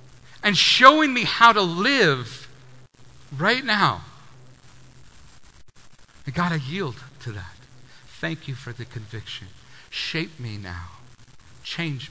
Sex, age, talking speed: male, 50-69, 120 wpm